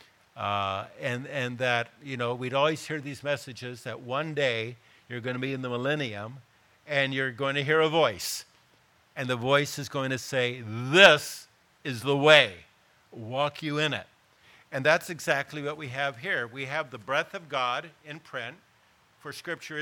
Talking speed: 180 wpm